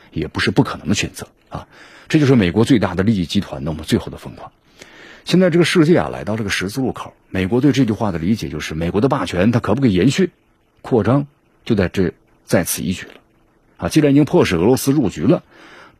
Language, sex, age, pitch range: Chinese, male, 50-69, 100-135 Hz